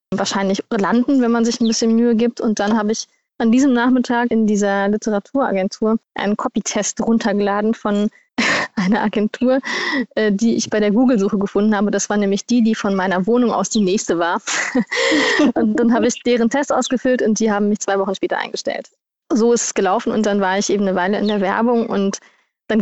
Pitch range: 205-235 Hz